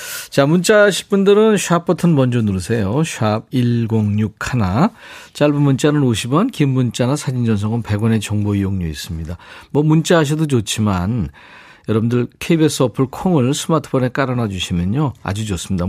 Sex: male